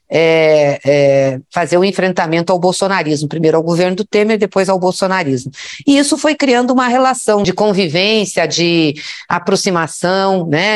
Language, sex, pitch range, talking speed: Portuguese, female, 155-200 Hz, 135 wpm